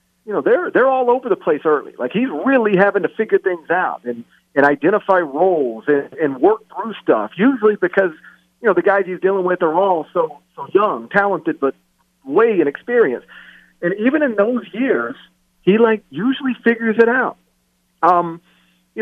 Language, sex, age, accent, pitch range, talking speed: English, male, 40-59, American, 160-235 Hz, 180 wpm